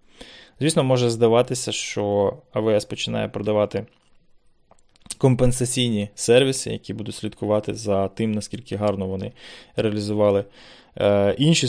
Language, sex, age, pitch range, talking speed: Ukrainian, male, 20-39, 105-120 Hz, 100 wpm